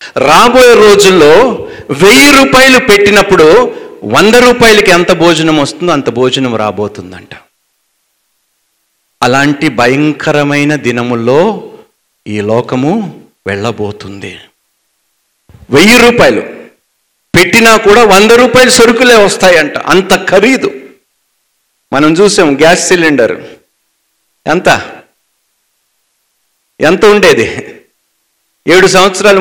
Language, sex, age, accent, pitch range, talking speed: Telugu, male, 50-69, native, 130-210 Hz, 80 wpm